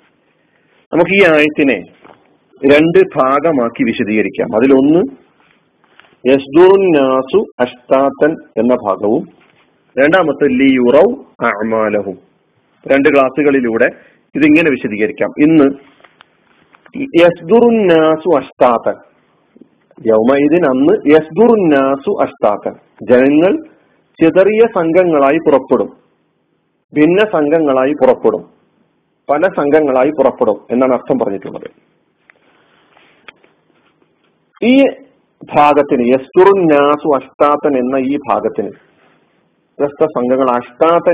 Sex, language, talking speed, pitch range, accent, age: male, Malayalam, 60 wpm, 130-165 Hz, native, 40-59